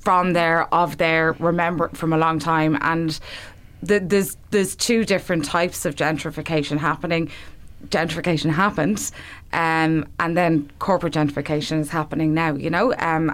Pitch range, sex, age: 155-180 Hz, female, 20-39